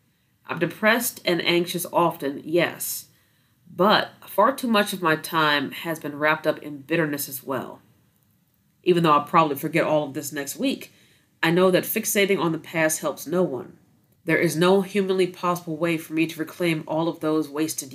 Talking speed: 185 wpm